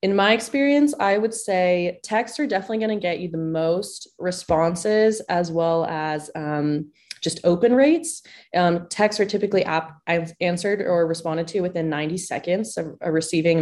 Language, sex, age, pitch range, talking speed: English, female, 20-39, 170-210 Hz, 170 wpm